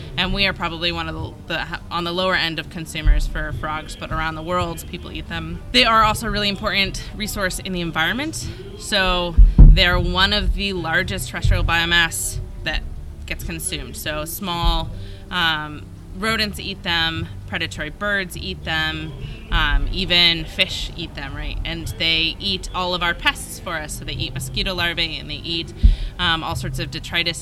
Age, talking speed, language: 20-39, 180 wpm, English